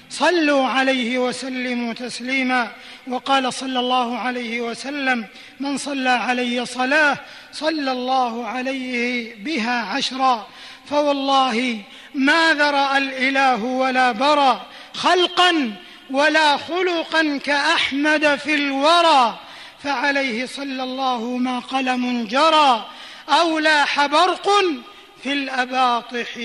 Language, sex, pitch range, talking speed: Arabic, male, 245-280 Hz, 95 wpm